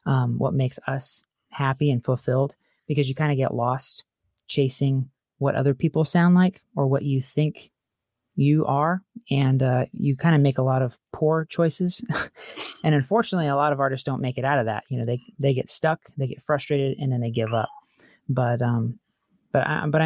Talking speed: 200 wpm